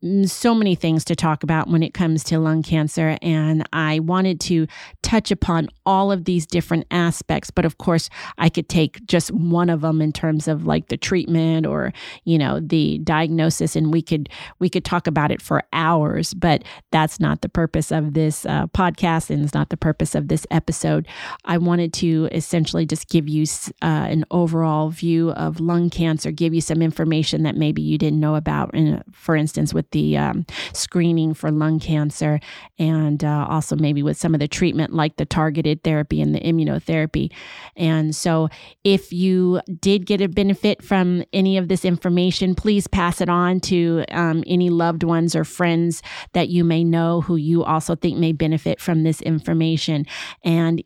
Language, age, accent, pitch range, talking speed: English, 30-49, American, 155-175 Hz, 190 wpm